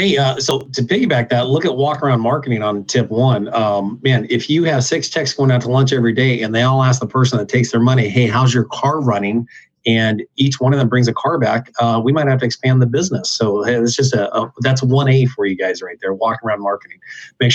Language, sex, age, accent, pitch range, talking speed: English, male, 30-49, American, 120-140 Hz, 260 wpm